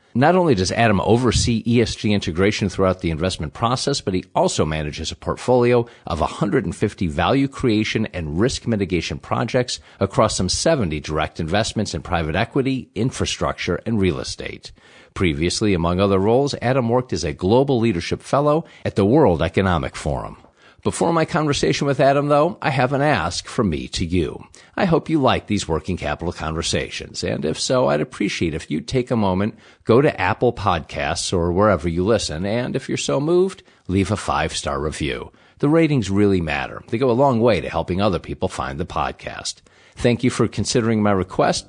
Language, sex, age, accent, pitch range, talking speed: English, male, 50-69, American, 90-120 Hz, 180 wpm